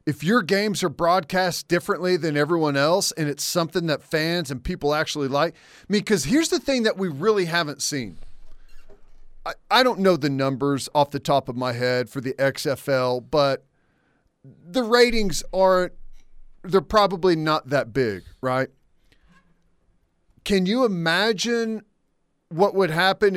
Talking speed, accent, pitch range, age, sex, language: 150 wpm, American, 145-190 Hz, 40-59, male, English